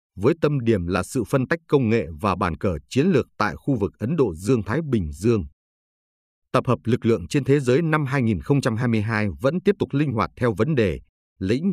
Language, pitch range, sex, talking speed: Vietnamese, 100-140 Hz, male, 210 wpm